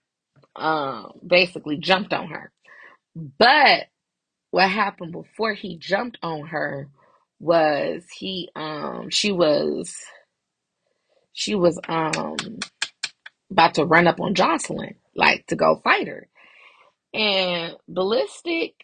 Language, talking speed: English, 110 wpm